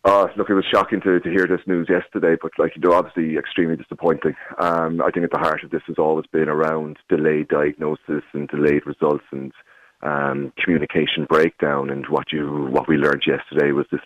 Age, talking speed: 30-49, 210 wpm